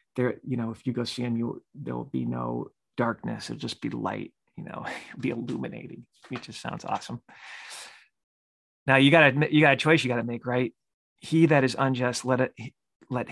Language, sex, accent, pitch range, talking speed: English, male, American, 115-135 Hz, 205 wpm